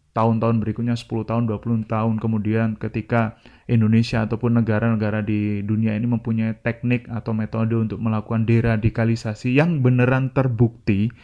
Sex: male